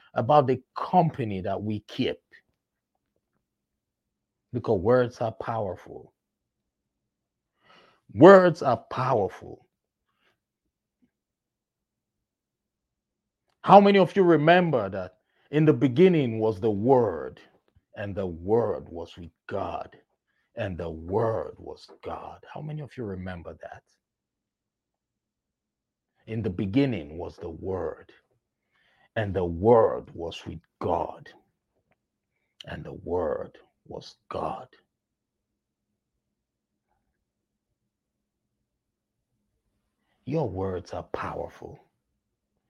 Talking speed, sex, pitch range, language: 90 wpm, male, 95-150 Hz, English